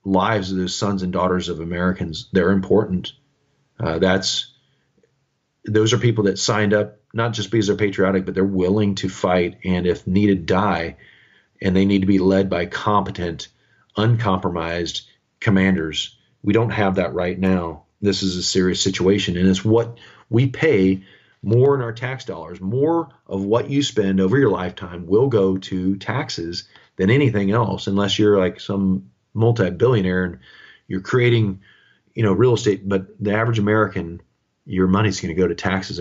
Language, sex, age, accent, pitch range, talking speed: English, male, 40-59, American, 95-105 Hz, 170 wpm